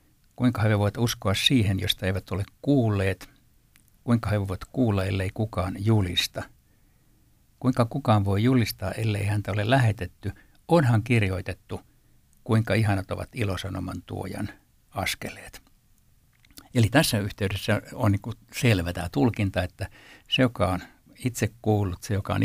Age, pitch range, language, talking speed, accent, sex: 60-79, 95-120 Hz, Finnish, 130 wpm, native, male